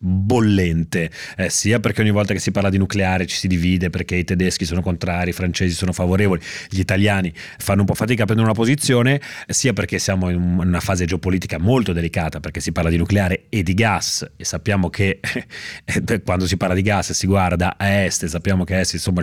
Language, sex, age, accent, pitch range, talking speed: Italian, male, 30-49, native, 90-105 Hz, 220 wpm